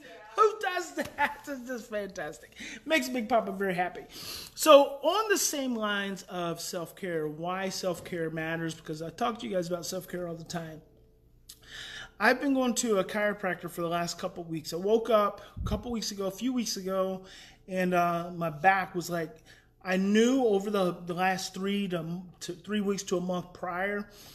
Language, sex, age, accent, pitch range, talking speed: English, male, 30-49, American, 170-210 Hz, 185 wpm